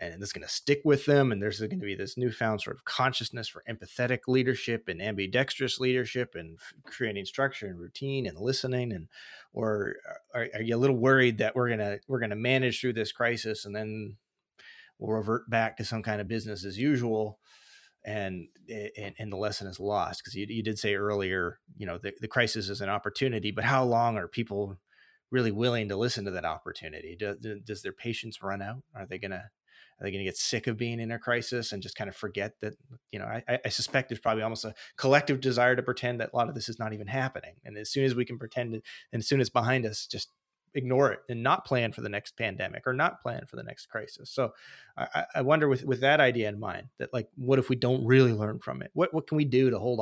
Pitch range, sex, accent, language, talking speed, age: 105-130 Hz, male, American, English, 240 wpm, 30-49